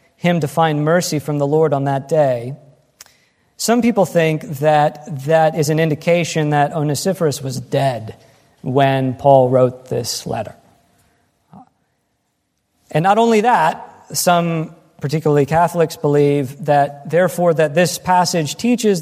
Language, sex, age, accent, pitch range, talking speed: English, male, 40-59, American, 145-175 Hz, 130 wpm